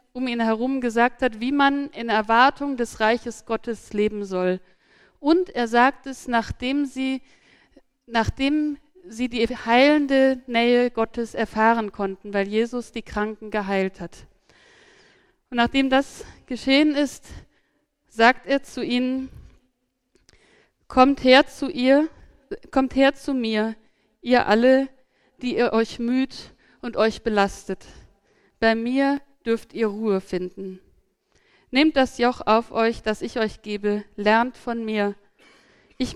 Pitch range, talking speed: 210-260 Hz, 130 wpm